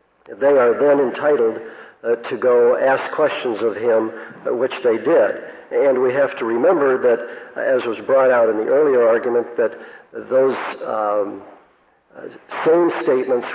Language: English